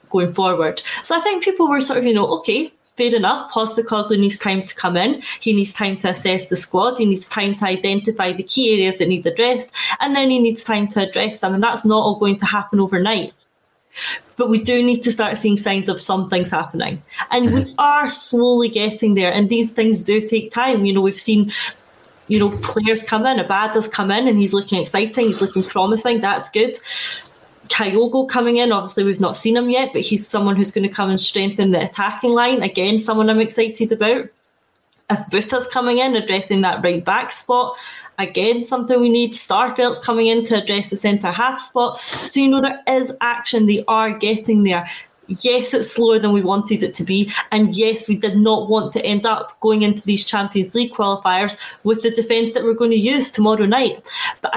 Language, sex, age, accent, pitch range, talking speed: English, female, 20-39, British, 200-240 Hz, 210 wpm